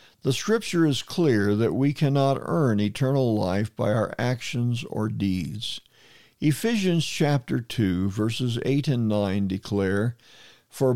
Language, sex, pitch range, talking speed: English, male, 110-150 Hz, 130 wpm